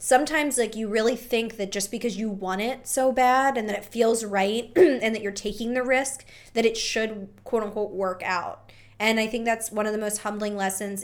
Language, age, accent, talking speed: English, 20-39, American, 225 wpm